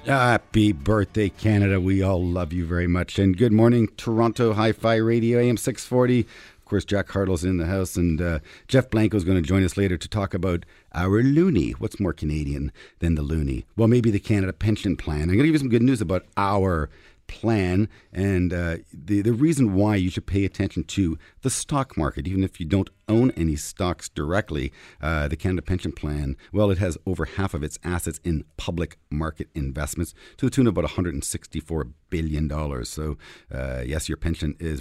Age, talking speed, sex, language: 50-69, 195 wpm, male, English